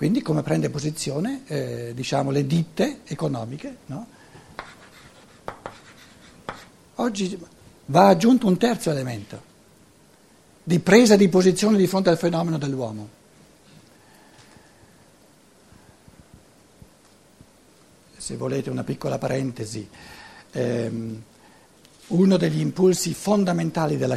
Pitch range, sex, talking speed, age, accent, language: 145-200 Hz, male, 90 wpm, 60-79, native, Italian